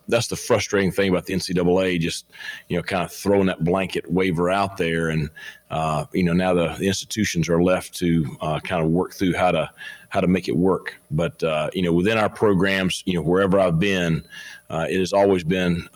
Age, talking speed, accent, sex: 40-59, 220 wpm, American, male